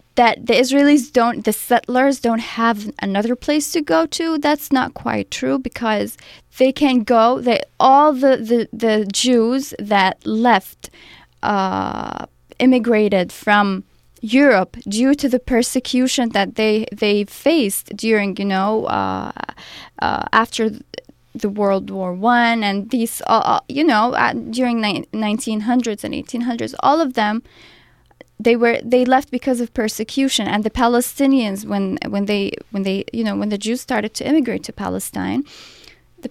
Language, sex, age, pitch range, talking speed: English, female, 20-39, 210-260 Hz, 150 wpm